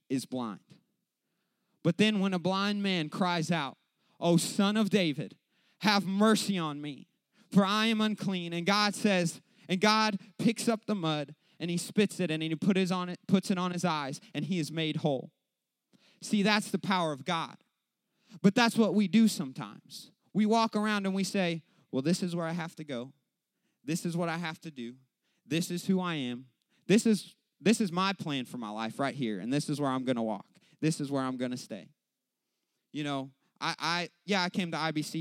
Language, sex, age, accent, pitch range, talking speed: English, male, 30-49, American, 145-200 Hz, 200 wpm